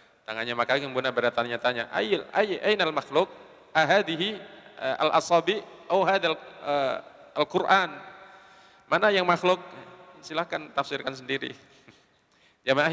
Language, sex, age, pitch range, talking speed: Indonesian, male, 40-59, 125-170 Hz, 95 wpm